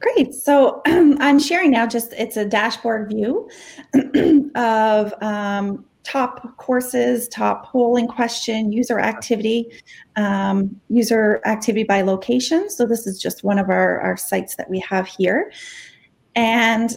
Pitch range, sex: 195-240 Hz, female